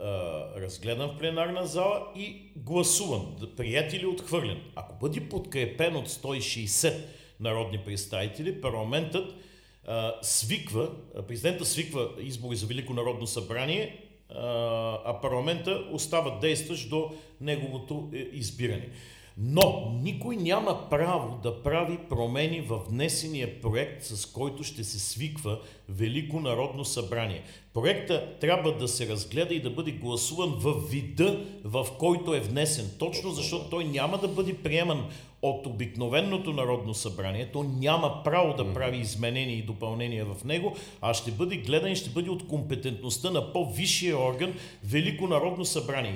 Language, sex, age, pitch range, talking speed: Bulgarian, male, 40-59, 120-170 Hz, 130 wpm